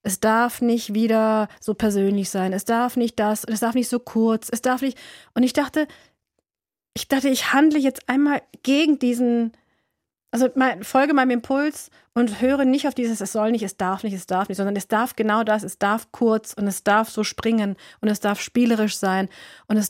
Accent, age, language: German, 30-49, German